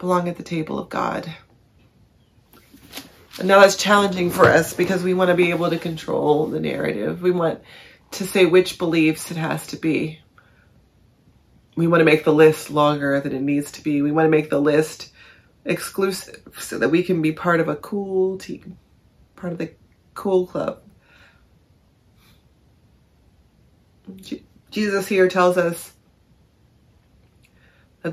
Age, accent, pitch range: 30-49, American, 140-180 Hz